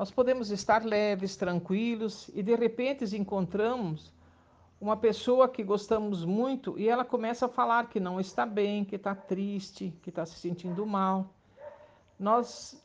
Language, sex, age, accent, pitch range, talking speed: Portuguese, male, 60-79, Brazilian, 195-245 Hz, 150 wpm